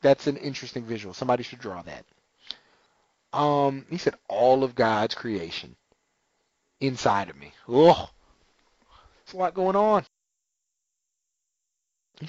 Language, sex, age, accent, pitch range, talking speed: English, male, 30-49, American, 125-175 Hz, 120 wpm